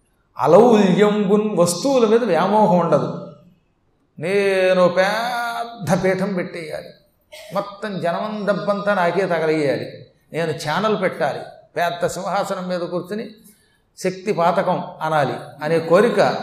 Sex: male